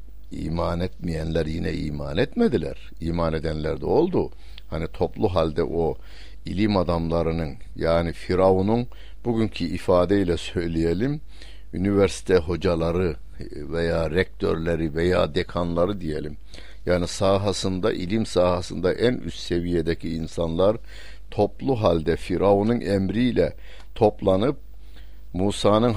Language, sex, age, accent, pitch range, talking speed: Turkish, male, 60-79, native, 85-100 Hz, 95 wpm